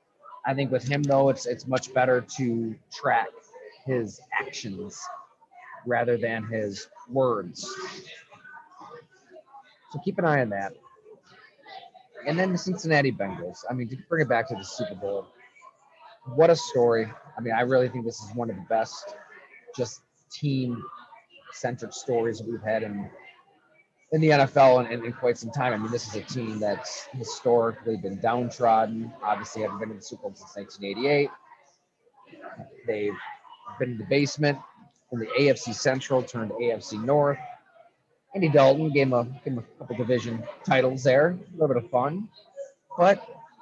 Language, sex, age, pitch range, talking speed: English, male, 30-49, 120-195 Hz, 155 wpm